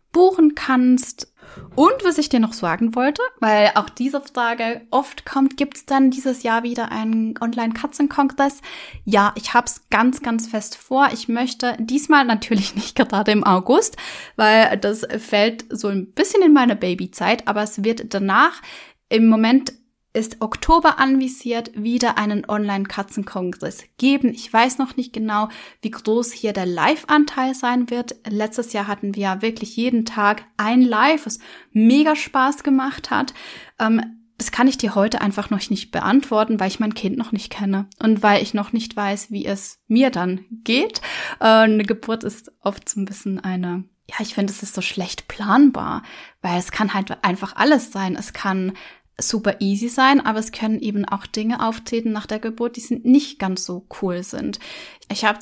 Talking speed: 175 wpm